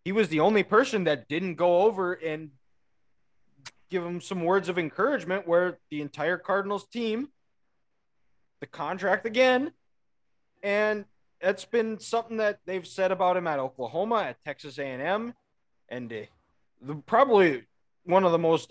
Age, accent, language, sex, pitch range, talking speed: 20-39, American, English, male, 155-210 Hz, 145 wpm